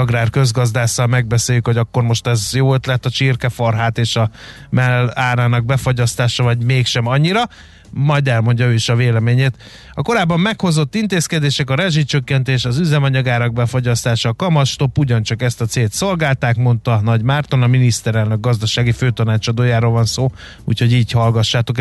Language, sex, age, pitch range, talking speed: Hungarian, male, 30-49, 115-140 Hz, 145 wpm